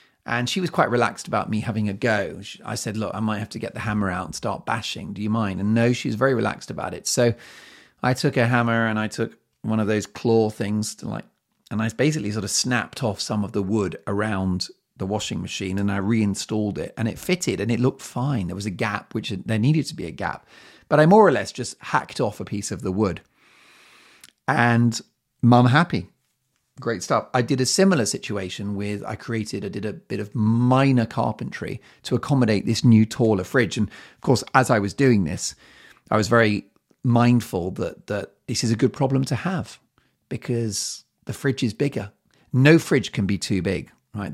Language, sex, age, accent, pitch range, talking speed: English, male, 40-59, British, 105-130 Hz, 215 wpm